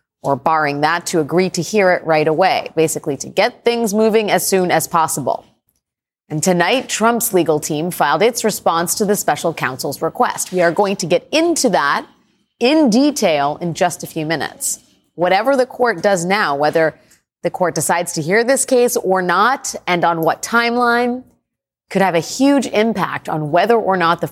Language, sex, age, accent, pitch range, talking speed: English, female, 30-49, American, 155-210 Hz, 185 wpm